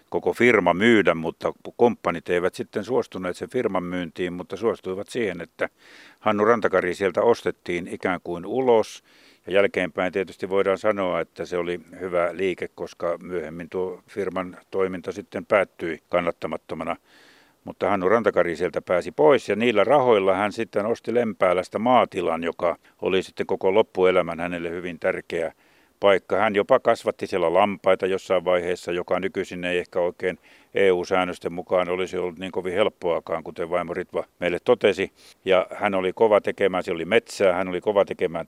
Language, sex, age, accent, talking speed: Finnish, male, 60-79, native, 155 wpm